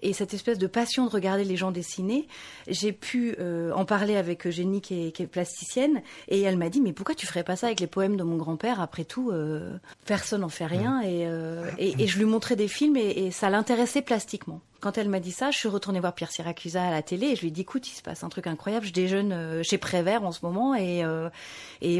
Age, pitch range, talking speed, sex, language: 30-49, 175-230 Hz, 260 wpm, female, French